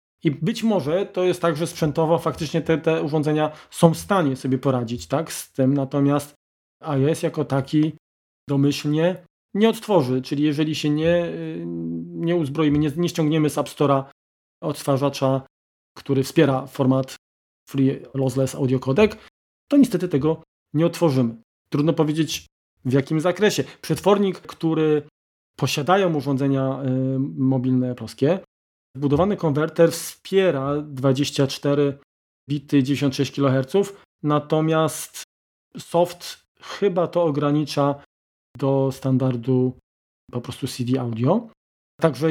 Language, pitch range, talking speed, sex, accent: Polish, 130-160 Hz, 120 wpm, male, native